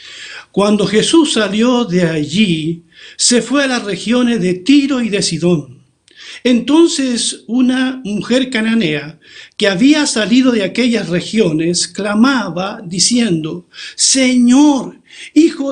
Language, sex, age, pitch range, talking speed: Spanish, male, 50-69, 180-245 Hz, 110 wpm